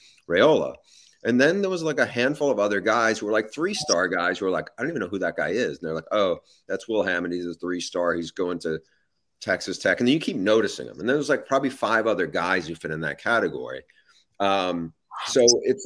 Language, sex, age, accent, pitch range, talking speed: English, male, 30-49, American, 85-115 Hz, 250 wpm